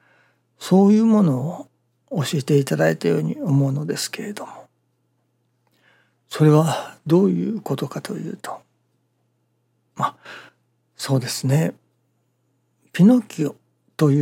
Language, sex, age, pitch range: Japanese, male, 60-79, 135-185 Hz